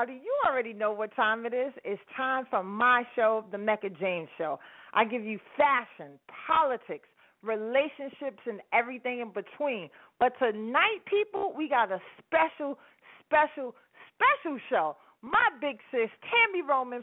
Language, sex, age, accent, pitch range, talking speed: English, female, 40-59, American, 220-290 Hz, 145 wpm